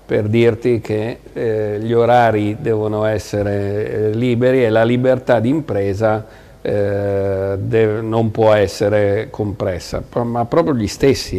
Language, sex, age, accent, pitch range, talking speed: Italian, male, 50-69, native, 105-120 Hz, 130 wpm